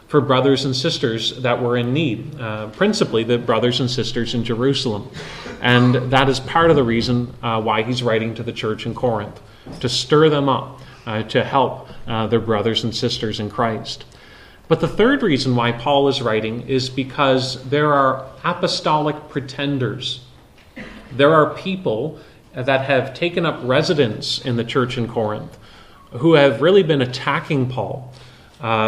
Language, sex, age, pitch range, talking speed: English, male, 30-49, 120-145 Hz, 165 wpm